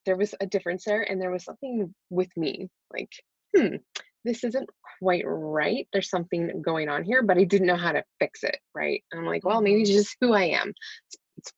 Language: English